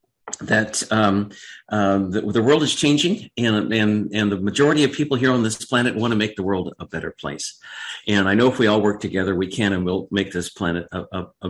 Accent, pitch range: American, 105-135 Hz